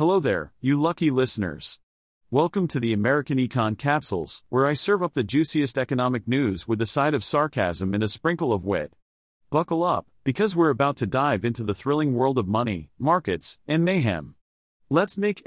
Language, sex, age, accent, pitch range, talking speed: English, male, 40-59, American, 115-150 Hz, 180 wpm